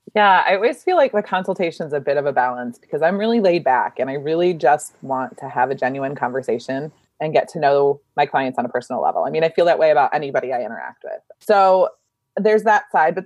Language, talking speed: English, 245 wpm